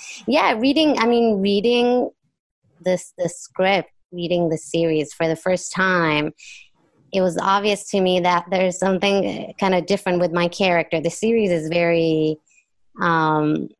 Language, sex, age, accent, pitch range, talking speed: English, female, 20-39, American, 170-200 Hz, 150 wpm